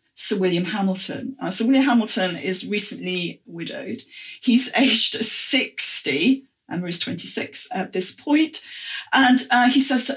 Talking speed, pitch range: 140 wpm, 185-245 Hz